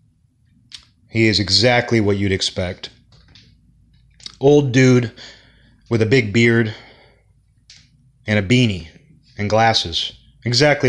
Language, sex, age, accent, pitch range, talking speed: English, male, 30-49, American, 105-130 Hz, 100 wpm